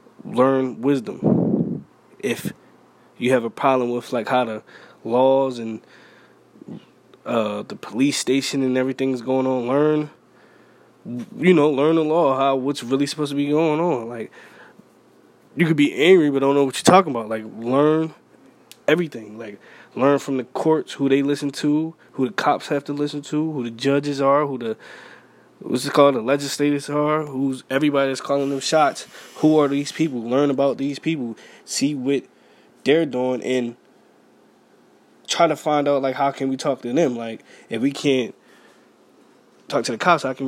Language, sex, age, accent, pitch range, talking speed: English, male, 20-39, American, 125-145 Hz, 175 wpm